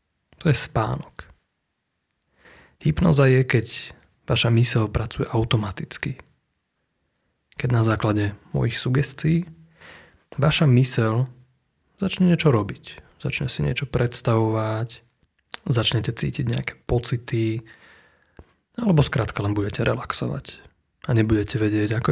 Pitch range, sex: 110-140 Hz, male